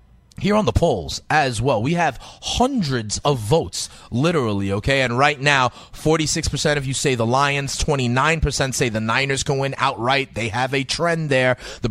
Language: English